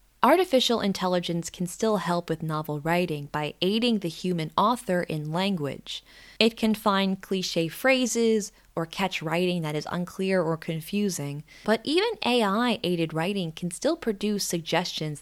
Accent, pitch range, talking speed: American, 160-225 Hz, 140 wpm